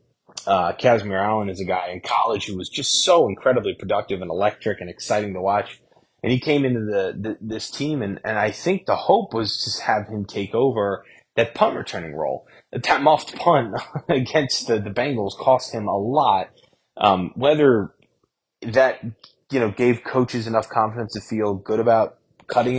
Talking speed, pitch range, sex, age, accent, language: 190 wpm, 95-120 Hz, male, 20-39, American, English